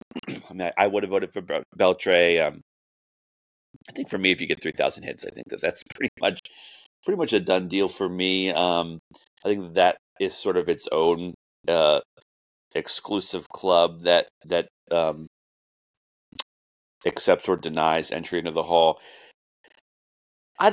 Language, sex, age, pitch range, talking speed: English, male, 30-49, 80-135 Hz, 155 wpm